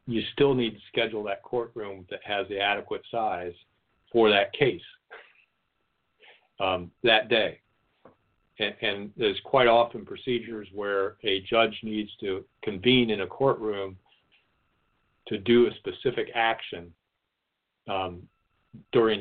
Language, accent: English, American